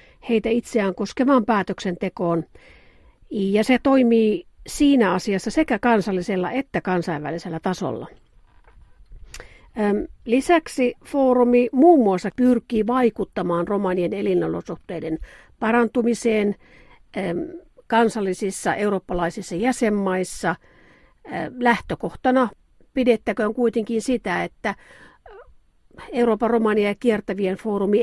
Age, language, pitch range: 50-69, Finnish, 185-235 Hz